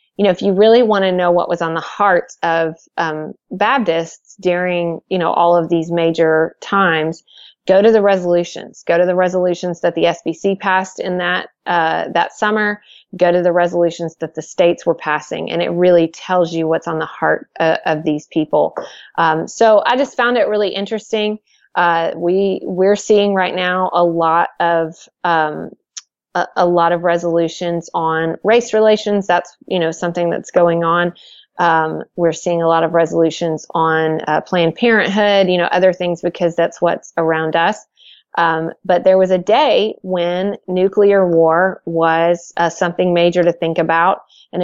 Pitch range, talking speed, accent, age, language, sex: 165-190 Hz, 175 wpm, American, 30-49, English, female